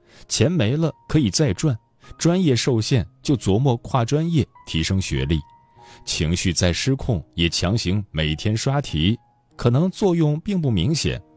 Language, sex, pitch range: Chinese, male, 80-125 Hz